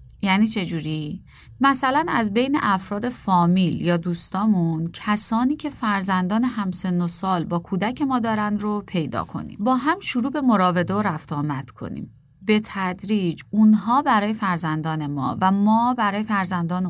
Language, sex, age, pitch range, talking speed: Persian, female, 30-49, 160-220 Hz, 140 wpm